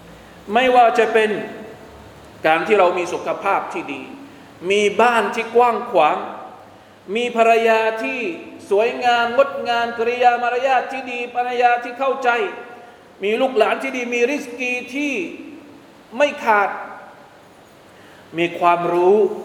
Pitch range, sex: 215-305 Hz, male